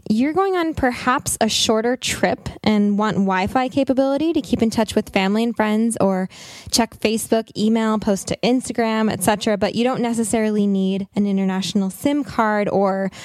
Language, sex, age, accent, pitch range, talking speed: English, female, 10-29, American, 190-235 Hz, 170 wpm